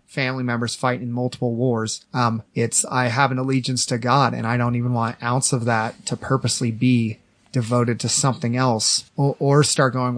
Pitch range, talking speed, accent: 120-145 Hz, 195 wpm, American